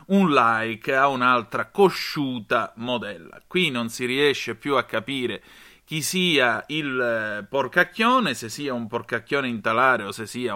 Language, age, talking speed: Italian, 30-49, 140 wpm